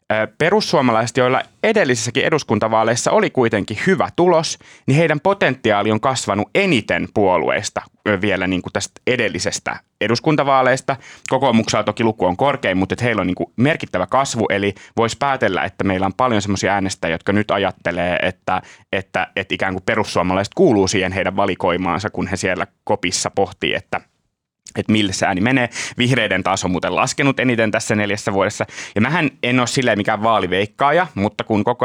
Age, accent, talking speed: 30-49, native, 155 wpm